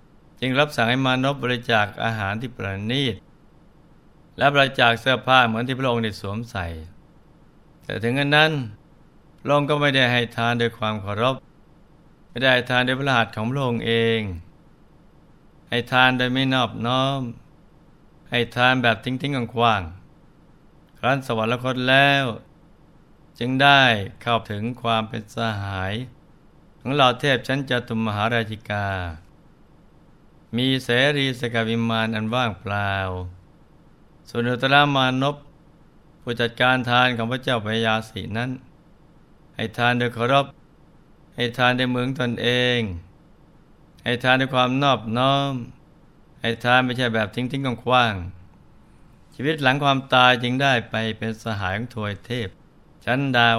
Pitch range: 115-135 Hz